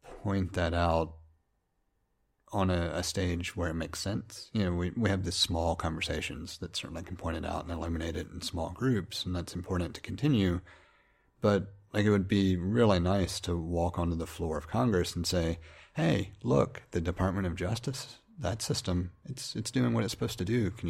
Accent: American